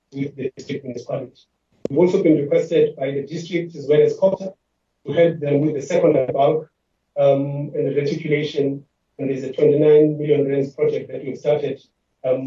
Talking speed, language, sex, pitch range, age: 180 wpm, English, male, 145-170 Hz, 30-49